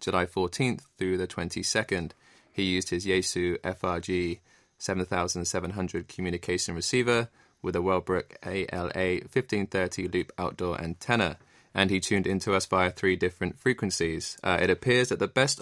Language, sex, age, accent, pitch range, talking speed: English, male, 20-39, British, 90-100 Hz, 140 wpm